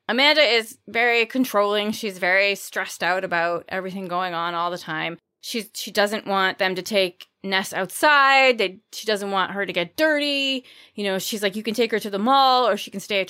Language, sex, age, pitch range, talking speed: English, female, 20-39, 190-265 Hz, 215 wpm